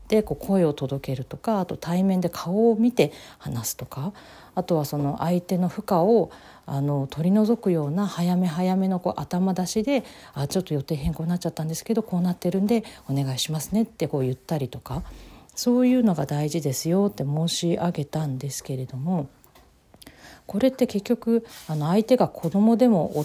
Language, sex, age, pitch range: Japanese, female, 40-59, 150-215 Hz